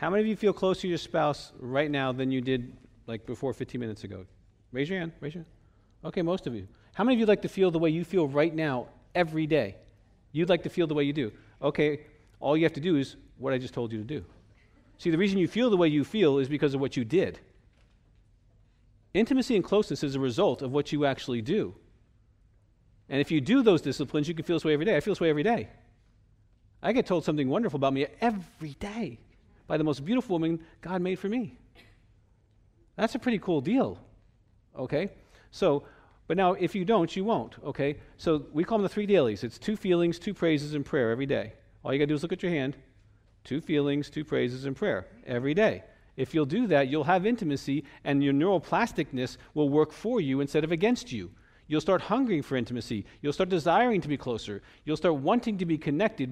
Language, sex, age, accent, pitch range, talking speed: English, male, 40-59, American, 115-175 Hz, 225 wpm